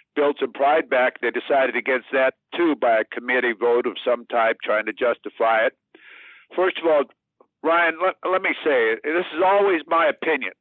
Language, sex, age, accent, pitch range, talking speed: English, male, 60-79, American, 125-155 Hz, 185 wpm